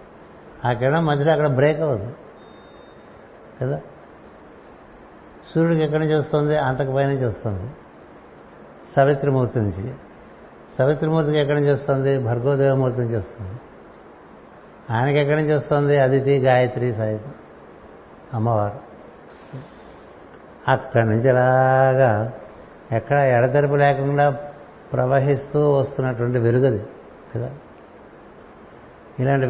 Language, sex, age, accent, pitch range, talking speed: Telugu, male, 60-79, native, 125-145 Hz, 90 wpm